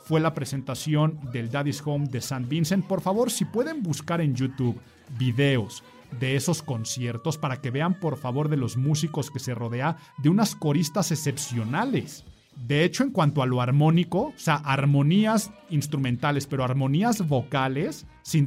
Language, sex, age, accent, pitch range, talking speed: Spanish, male, 40-59, Mexican, 135-175 Hz, 160 wpm